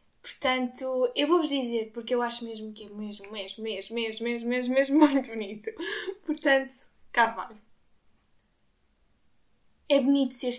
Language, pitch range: Portuguese, 220-255 Hz